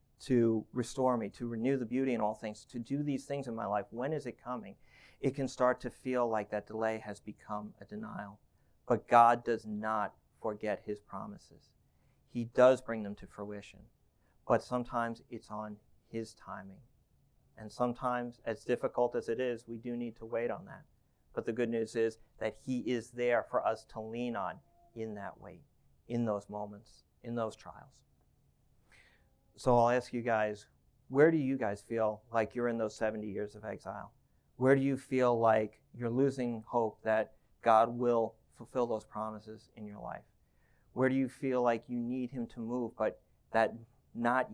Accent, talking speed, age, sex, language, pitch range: American, 185 wpm, 40-59, male, English, 110-125 Hz